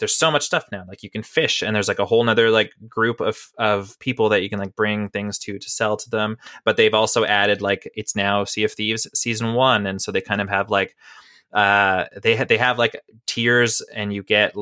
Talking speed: 245 wpm